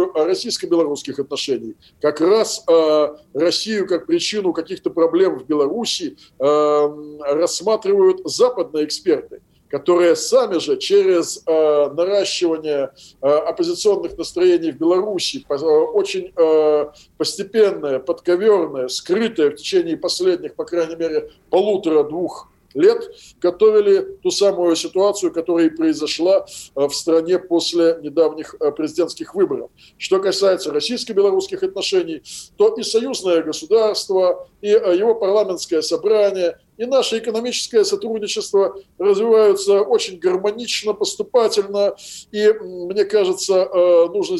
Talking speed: 95 wpm